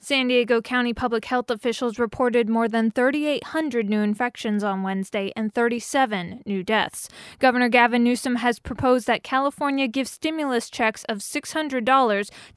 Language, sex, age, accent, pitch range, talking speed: English, female, 20-39, American, 215-255 Hz, 145 wpm